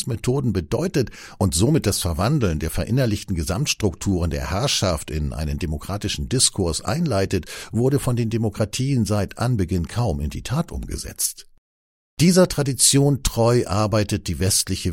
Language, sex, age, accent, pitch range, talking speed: German, male, 60-79, German, 85-120 Hz, 130 wpm